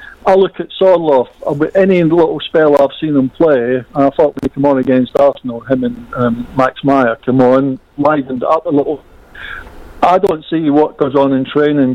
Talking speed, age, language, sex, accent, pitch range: 190 wpm, 50-69, English, male, British, 130-150 Hz